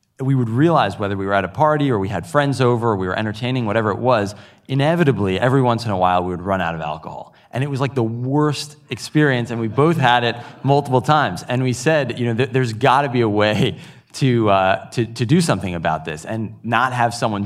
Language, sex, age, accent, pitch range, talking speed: English, male, 20-39, American, 100-130 Hz, 245 wpm